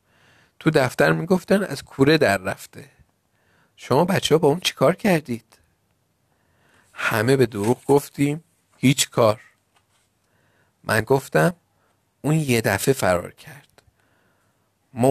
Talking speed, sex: 110 wpm, male